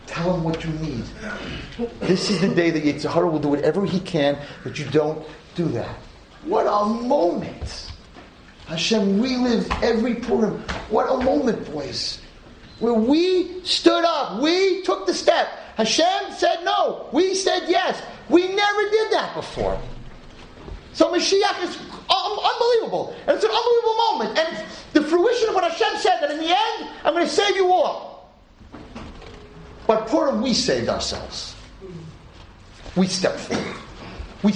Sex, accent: male, American